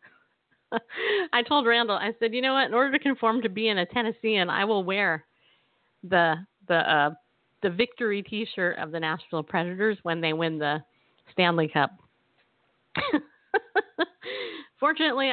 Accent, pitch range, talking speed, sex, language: American, 165-230 Hz, 145 wpm, female, English